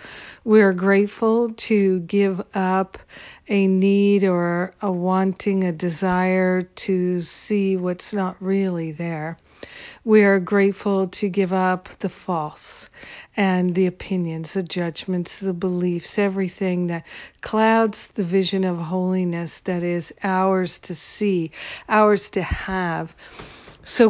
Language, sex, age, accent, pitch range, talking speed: English, female, 50-69, American, 180-200 Hz, 125 wpm